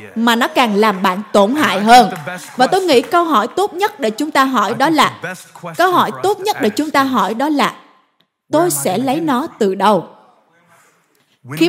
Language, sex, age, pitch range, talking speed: Vietnamese, female, 20-39, 220-295 Hz, 195 wpm